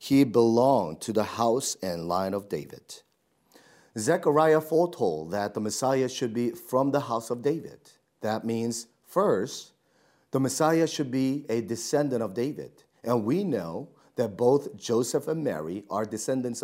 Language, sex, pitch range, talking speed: English, male, 110-140 Hz, 150 wpm